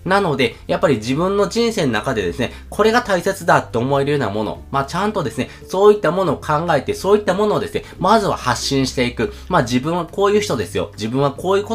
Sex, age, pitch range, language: male, 20-39, 110-165 Hz, Japanese